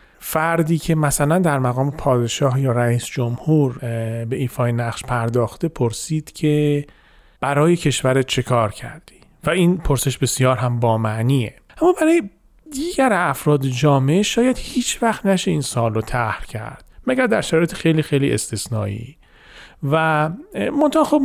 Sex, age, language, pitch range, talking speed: male, 40-59, Persian, 130-175 Hz, 140 wpm